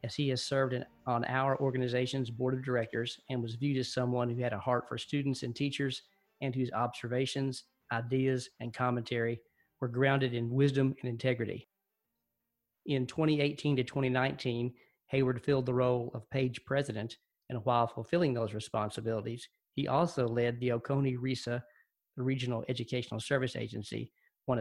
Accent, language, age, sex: American, English, 40-59, male